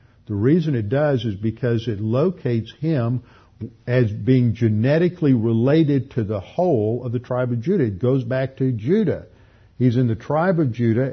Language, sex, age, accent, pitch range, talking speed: English, male, 50-69, American, 110-130 Hz, 175 wpm